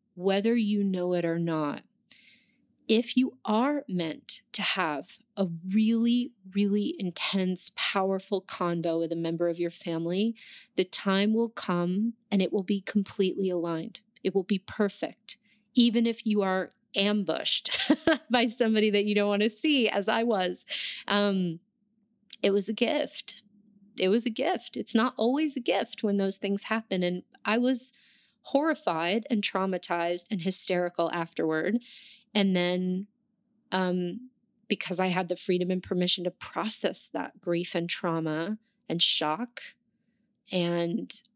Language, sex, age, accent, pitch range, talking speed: English, female, 30-49, American, 180-225 Hz, 145 wpm